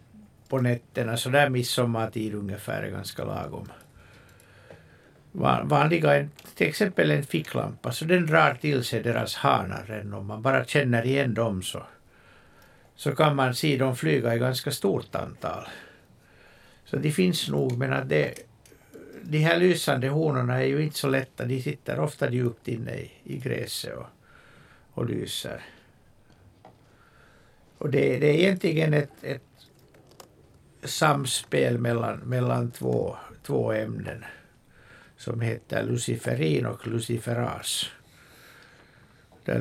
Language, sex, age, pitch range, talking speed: Swedish, male, 60-79, 115-145 Hz, 125 wpm